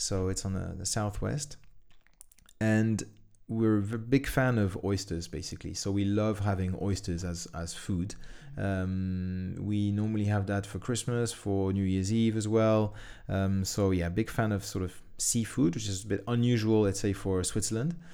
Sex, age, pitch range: male, 30-49, 100-115 Hz